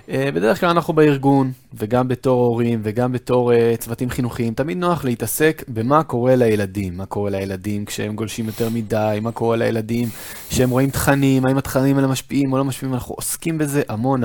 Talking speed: 175 wpm